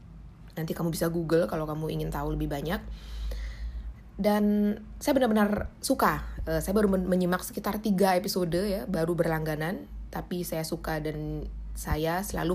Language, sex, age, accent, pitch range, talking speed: Indonesian, female, 20-39, native, 160-200 Hz, 140 wpm